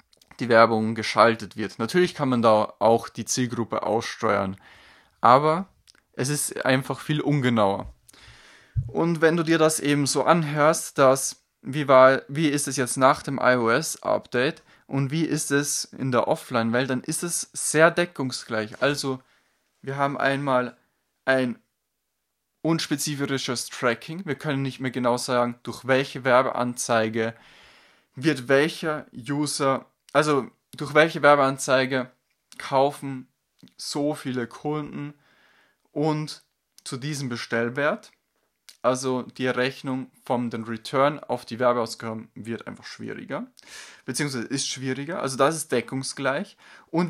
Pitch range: 125-150 Hz